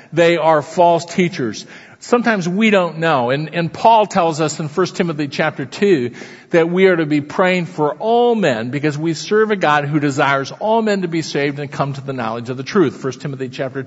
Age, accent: 50-69, American